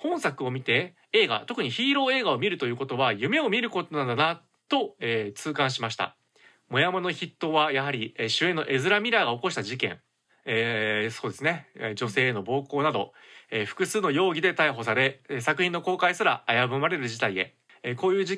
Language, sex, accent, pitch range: Japanese, male, native, 130-190 Hz